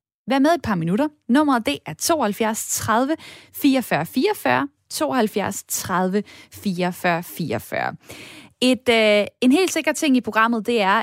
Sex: female